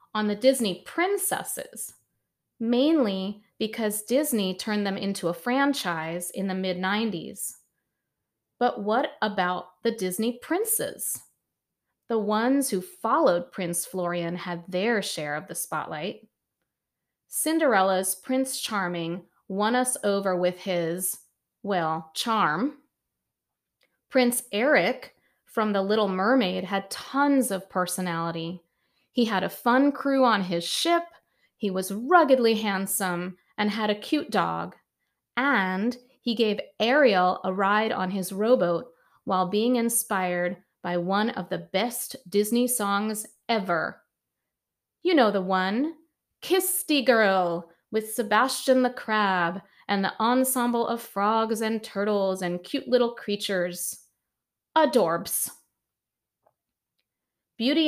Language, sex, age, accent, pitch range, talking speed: English, female, 30-49, American, 185-250 Hz, 120 wpm